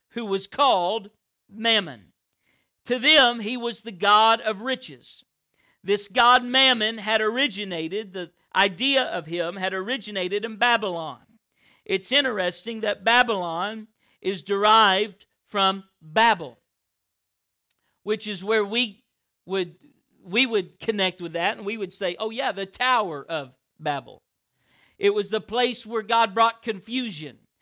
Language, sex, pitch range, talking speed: English, male, 190-235 Hz, 135 wpm